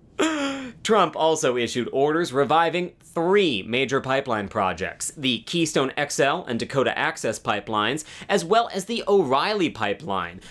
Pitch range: 140-200 Hz